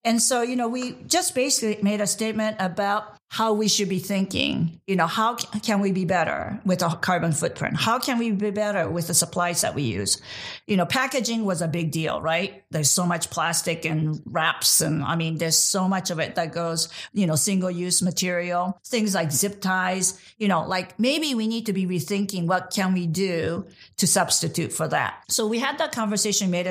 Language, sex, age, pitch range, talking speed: English, female, 50-69, 180-230 Hz, 210 wpm